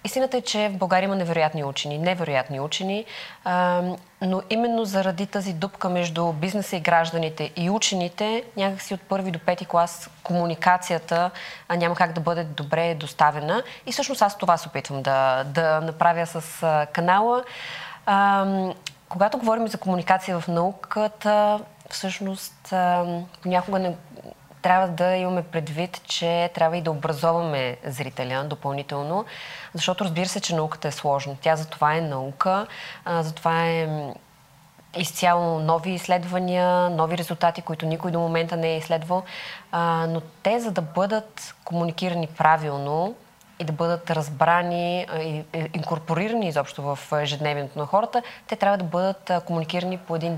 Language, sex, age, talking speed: Bulgarian, female, 20-39, 140 wpm